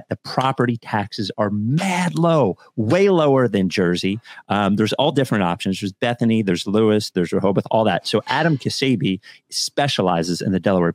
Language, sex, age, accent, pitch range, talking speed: English, male, 30-49, American, 95-120 Hz, 165 wpm